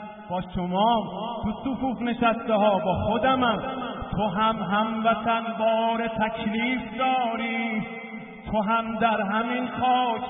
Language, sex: Persian, male